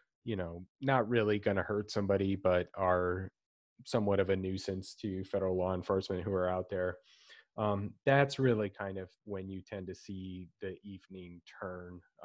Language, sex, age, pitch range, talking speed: English, male, 30-49, 95-105 Hz, 165 wpm